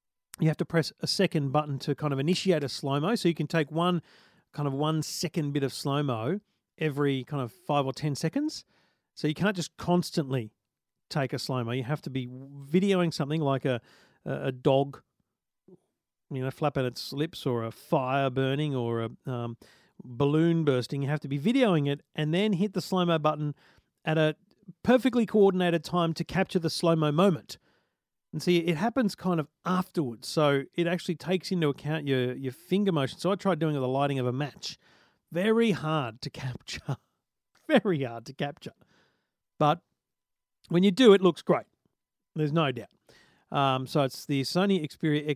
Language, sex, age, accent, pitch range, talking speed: English, male, 40-59, Australian, 140-180 Hz, 180 wpm